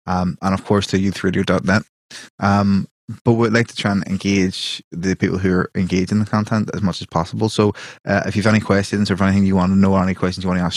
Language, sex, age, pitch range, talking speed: English, male, 20-39, 95-105 Hz, 250 wpm